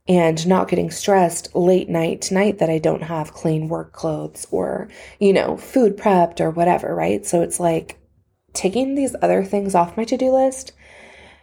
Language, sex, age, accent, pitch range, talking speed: English, female, 20-39, American, 175-225 Hz, 175 wpm